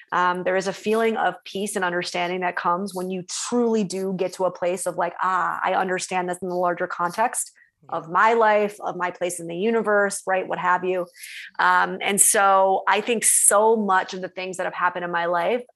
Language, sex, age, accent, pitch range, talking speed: English, female, 30-49, American, 180-200 Hz, 220 wpm